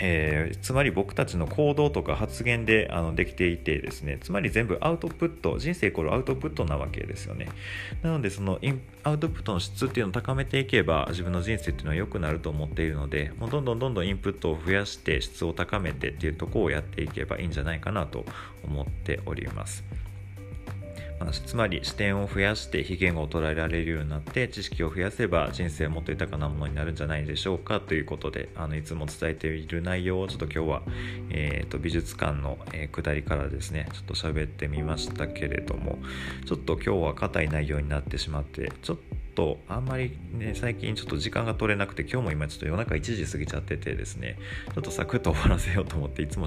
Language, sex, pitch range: Japanese, male, 75-100 Hz